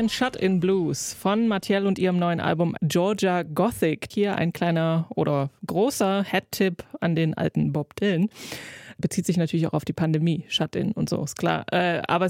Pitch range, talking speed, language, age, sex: 175-215 Hz, 165 wpm, German, 20-39, female